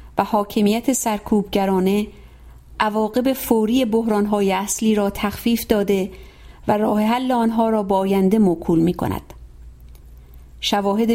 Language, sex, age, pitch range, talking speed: English, female, 50-69, 195-225 Hz, 110 wpm